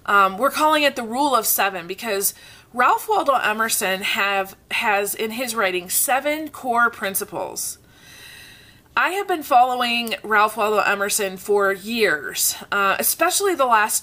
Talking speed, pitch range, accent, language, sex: 140 wpm, 200-265 Hz, American, English, female